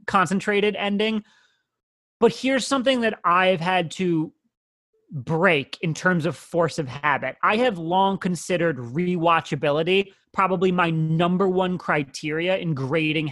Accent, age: American, 30-49